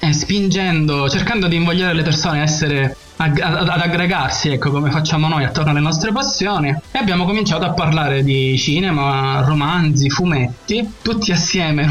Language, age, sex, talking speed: Italian, 20-39, male, 160 wpm